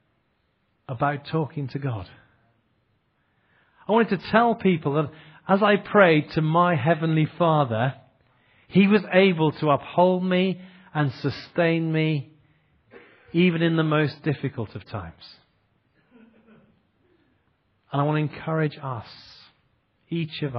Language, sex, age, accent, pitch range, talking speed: English, male, 40-59, British, 115-150 Hz, 120 wpm